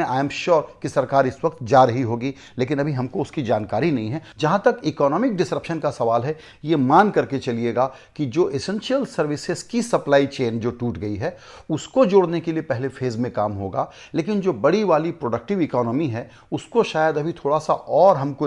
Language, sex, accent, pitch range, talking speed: Hindi, male, native, 130-170 Hz, 145 wpm